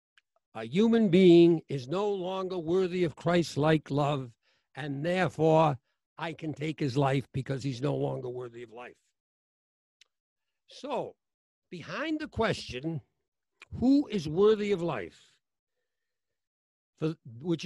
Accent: American